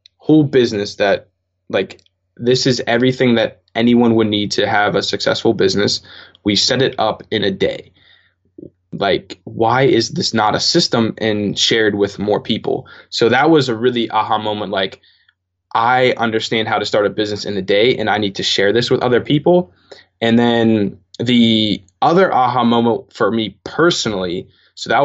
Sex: male